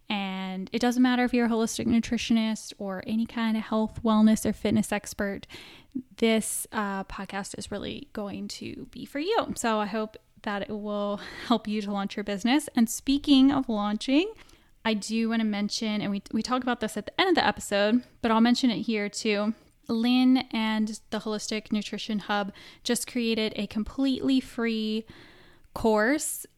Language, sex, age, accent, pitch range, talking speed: English, female, 10-29, American, 210-245 Hz, 180 wpm